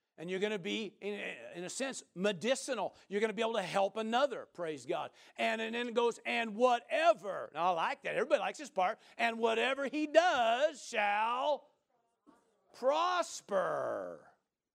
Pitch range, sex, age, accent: 185-240 Hz, male, 50-69, American